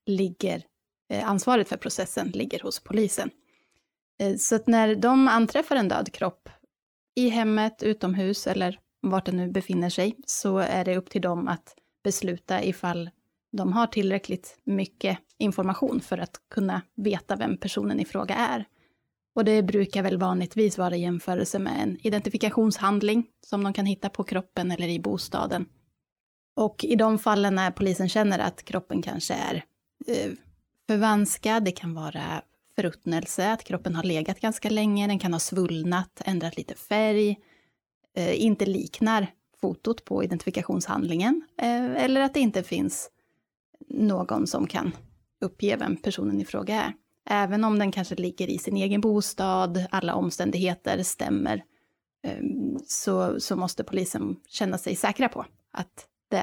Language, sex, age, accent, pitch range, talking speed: Swedish, female, 20-39, native, 185-220 Hz, 145 wpm